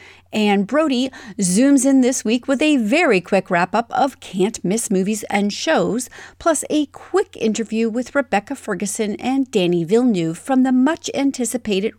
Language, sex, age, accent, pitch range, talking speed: English, female, 40-59, American, 185-270 Hz, 130 wpm